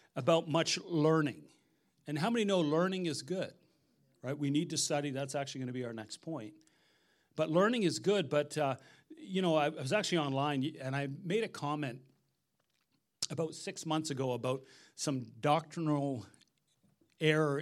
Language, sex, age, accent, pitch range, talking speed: English, male, 40-59, American, 135-170 Hz, 165 wpm